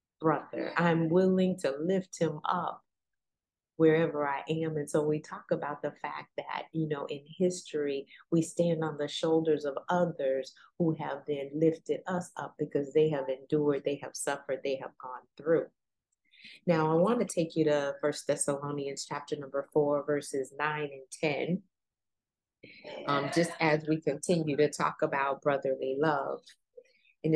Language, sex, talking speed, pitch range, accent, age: English, female, 160 wpm, 145-165 Hz, American, 30-49